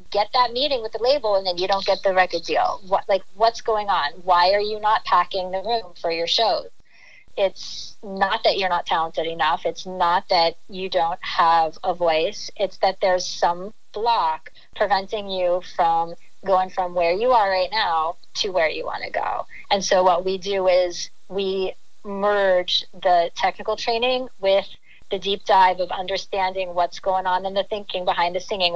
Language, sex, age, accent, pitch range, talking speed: English, female, 30-49, American, 175-205 Hz, 190 wpm